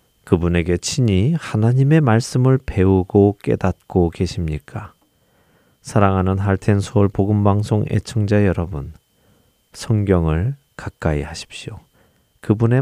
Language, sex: Korean, male